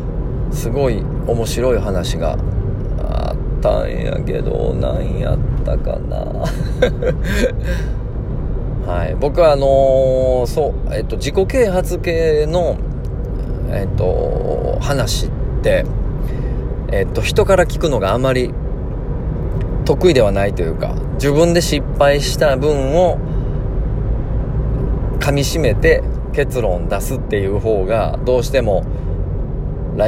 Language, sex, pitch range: Japanese, male, 110-140 Hz